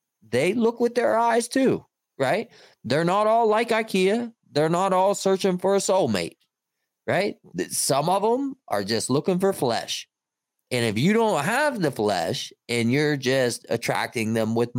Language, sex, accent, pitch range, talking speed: English, male, American, 125-200 Hz, 165 wpm